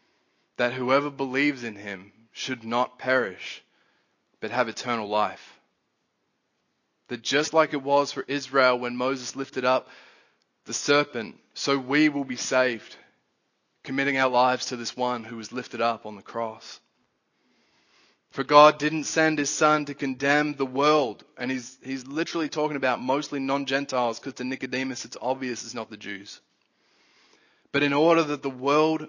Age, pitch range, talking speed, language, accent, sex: 20-39, 120-145 Hz, 155 wpm, English, Australian, male